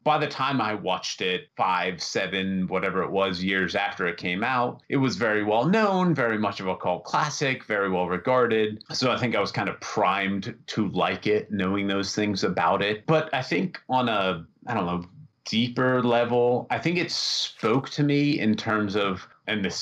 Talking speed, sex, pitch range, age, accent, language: 200 wpm, male, 100-130 Hz, 30-49, American, English